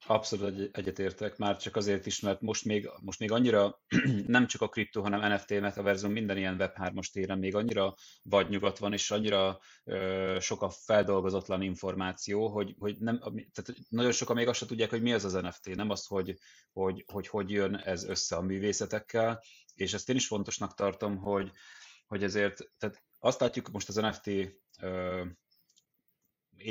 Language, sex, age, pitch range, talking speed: Hungarian, male, 30-49, 95-110 Hz, 175 wpm